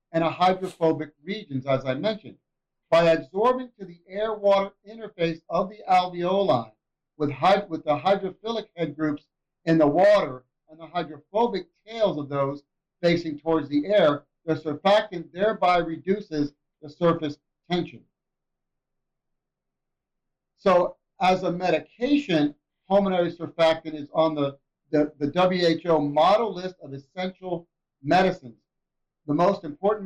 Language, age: English, 60-79